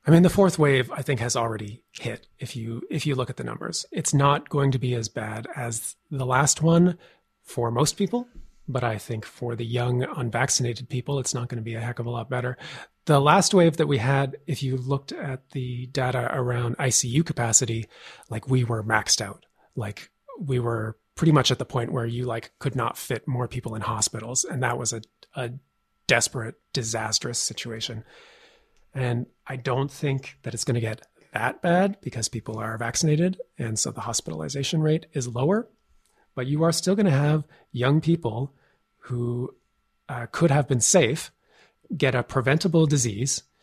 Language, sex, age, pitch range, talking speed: English, male, 30-49, 120-145 Hz, 190 wpm